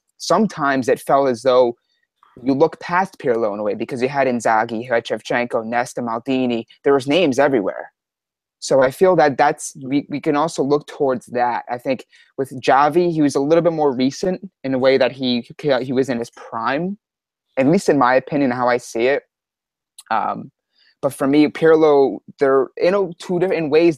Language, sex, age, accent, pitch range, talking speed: English, male, 20-39, American, 125-155 Hz, 195 wpm